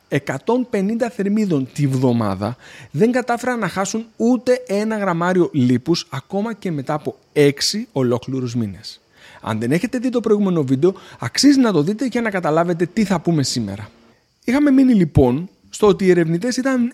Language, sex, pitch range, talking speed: Greek, male, 130-210 Hz, 160 wpm